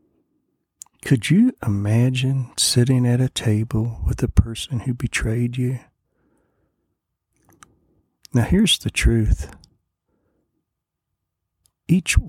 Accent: American